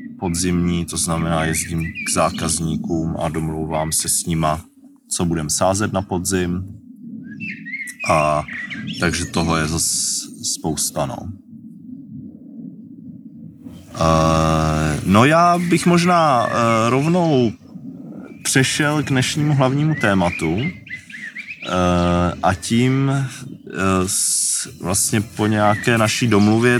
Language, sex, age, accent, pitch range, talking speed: Czech, male, 30-49, native, 95-130 Hz, 90 wpm